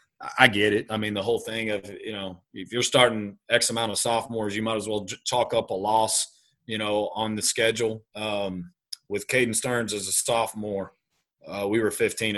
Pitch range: 95-110 Hz